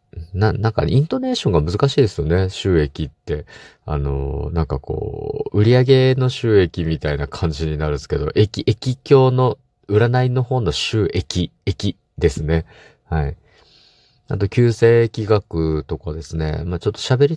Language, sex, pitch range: Japanese, male, 80-115 Hz